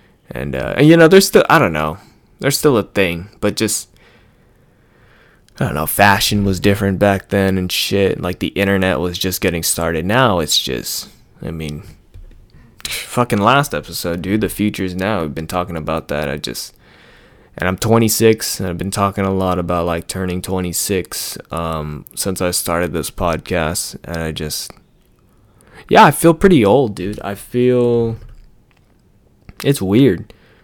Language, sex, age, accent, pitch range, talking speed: English, male, 20-39, American, 90-110 Hz, 165 wpm